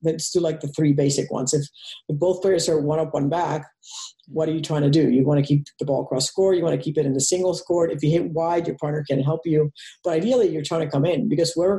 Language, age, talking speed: English, 50-69, 280 wpm